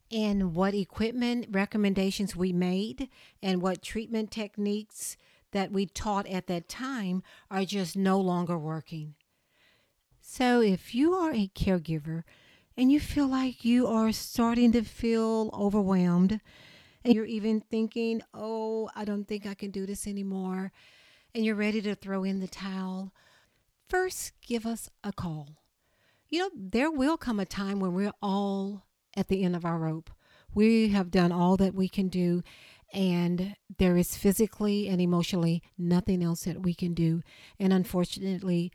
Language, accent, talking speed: English, American, 155 wpm